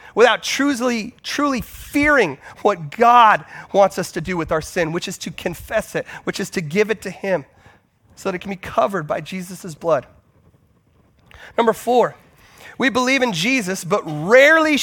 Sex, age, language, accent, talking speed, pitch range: male, 30-49, English, American, 170 wpm, 185-255 Hz